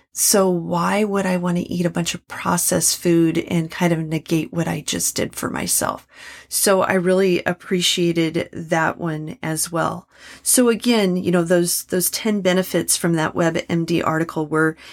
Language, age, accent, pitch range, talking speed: English, 40-59, American, 165-195 Hz, 175 wpm